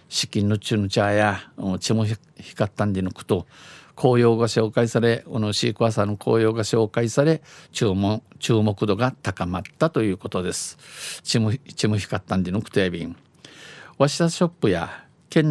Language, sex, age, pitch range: Japanese, male, 50-69, 100-130 Hz